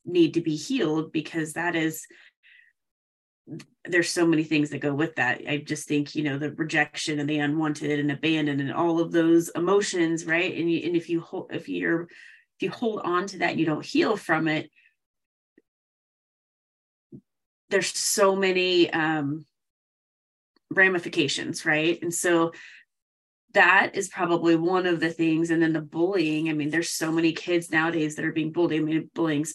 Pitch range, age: 155-195 Hz, 30-49